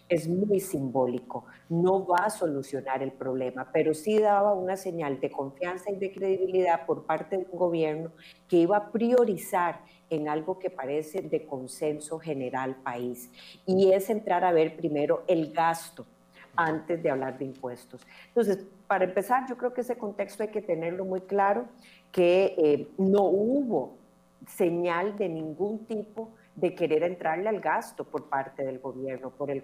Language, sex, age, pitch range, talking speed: Spanish, female, 40-59, 155-200 Hz, 165 wpm